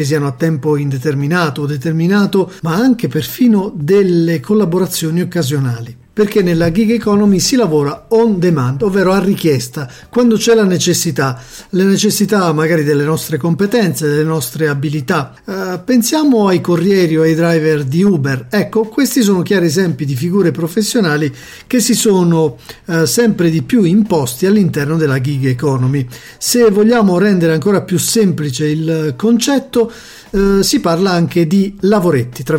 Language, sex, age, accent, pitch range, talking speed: Italian, male, 50-69, native, 155-205 Hz, 145 wpm